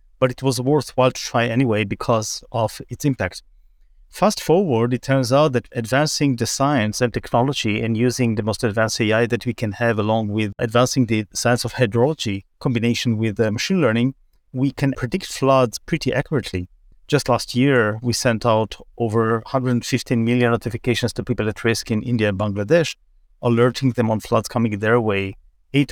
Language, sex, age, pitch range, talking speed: English, male, 30-49, 110-130 Hz, 175 wpm